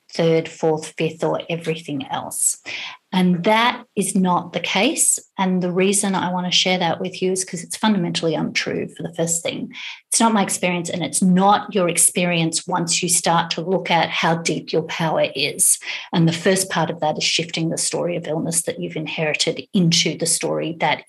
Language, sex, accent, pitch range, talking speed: English, female, Australian, 170-200 Hz, 200 wpm